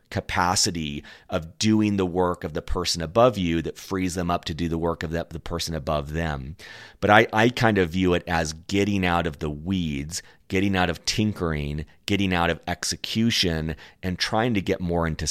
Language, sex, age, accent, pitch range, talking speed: English, male, 30-49, American, 85-95 Hz, 200 wpm